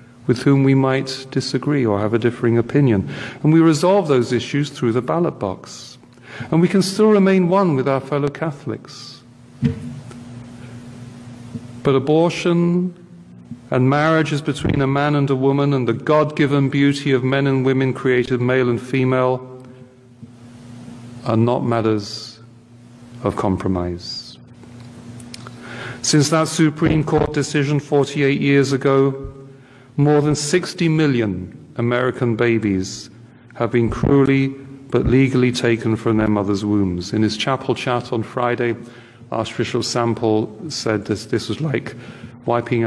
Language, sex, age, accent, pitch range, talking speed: English, male, 40-59, British, 115-135 Hz, 135 wpm